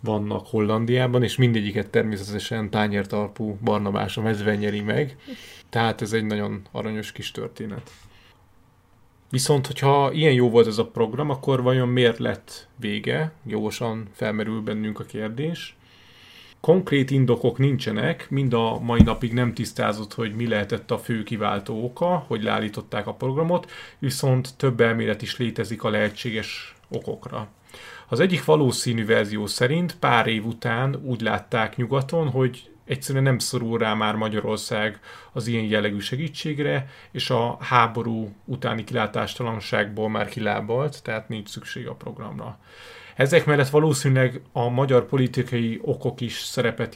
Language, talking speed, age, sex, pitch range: Hungarian, 135 wpm, 30-49, male, 110-130 Hz